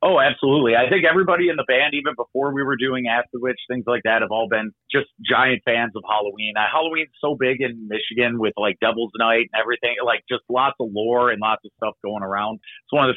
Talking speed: 240 wpm